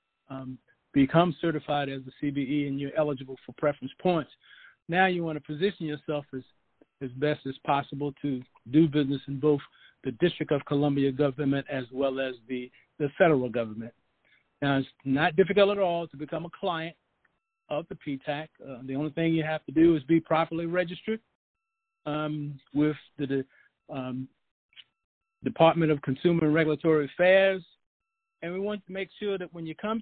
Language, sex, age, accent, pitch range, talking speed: English, male, 50-69, American, 140-175 Hz, 170 wpm